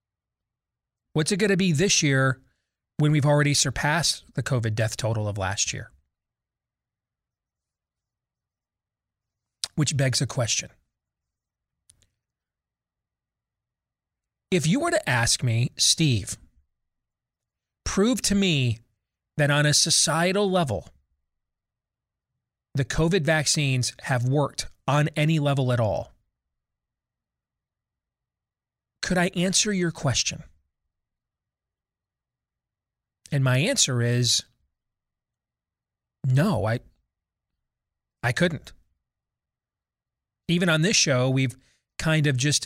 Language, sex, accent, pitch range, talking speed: English, male, American, 110-155 Hz, 95 wpm